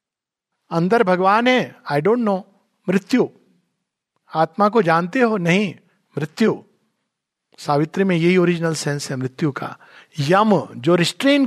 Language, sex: Hindi, male